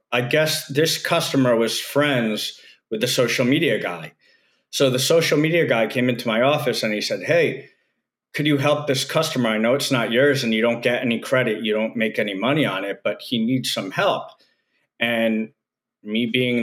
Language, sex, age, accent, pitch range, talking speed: English, male, 40-59, American, 110-140 Hz, 200 wpm